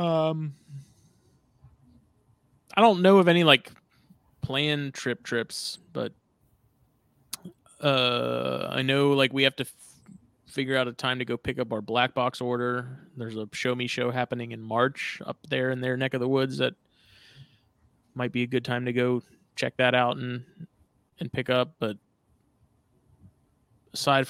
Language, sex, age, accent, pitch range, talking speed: English, male, 20-39, American, 120-135 Hz, 155 wpm